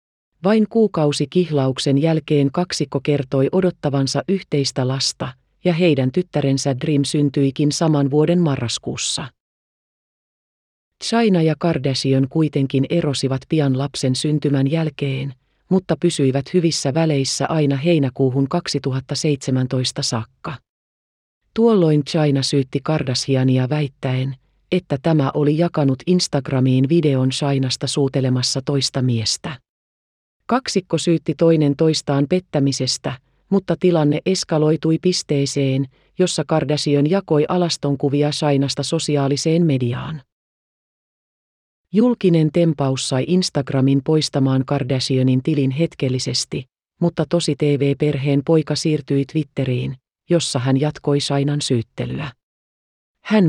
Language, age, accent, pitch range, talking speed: Finnish, 40-59, native, 135-160 Hz, 95 wpm